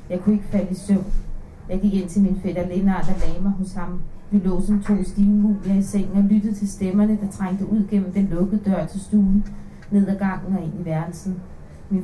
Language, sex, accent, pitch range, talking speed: Danish, female, native, 185-200 Hz, 225 wpm